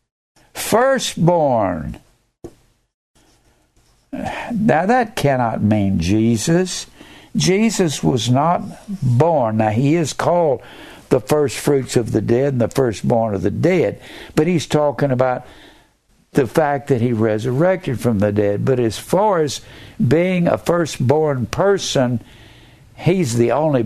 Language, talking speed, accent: English, 125 wpm, American